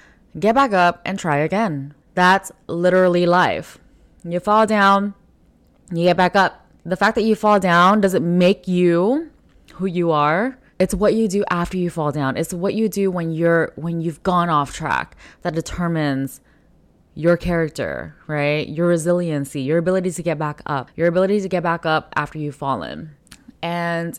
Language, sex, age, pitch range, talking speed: English, female, 10-29, 155-185 Hz, 190 wpm